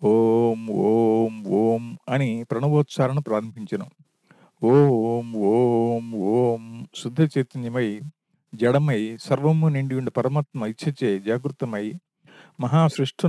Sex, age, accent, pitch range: male, 50-69, native, 120-155 Hz